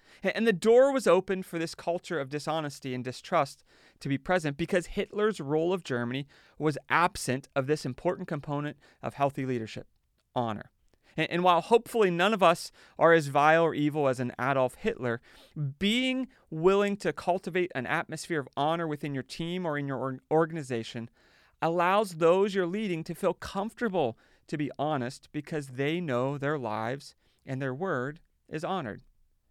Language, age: English, 30-49